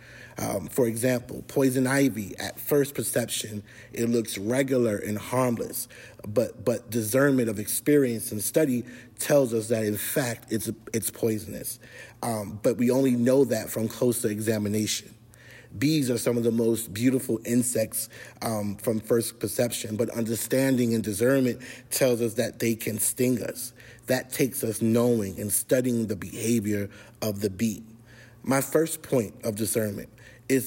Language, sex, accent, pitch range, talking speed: English, male, American, 110-125 Hz, 150 wpm